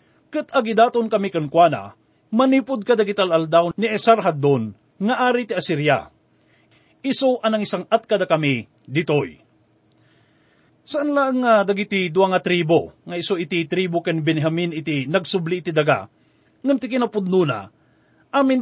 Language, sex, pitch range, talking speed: English, male, 170-225 Hz, 125 wpm